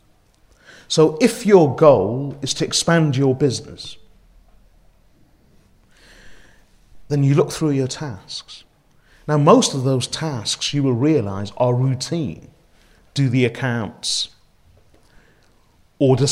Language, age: English, 40-59